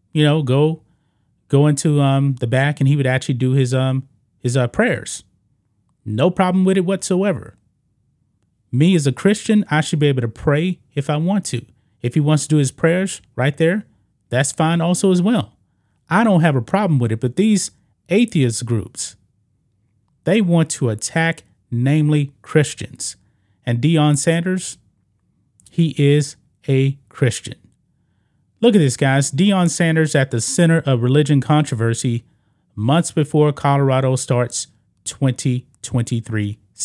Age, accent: 30-49, American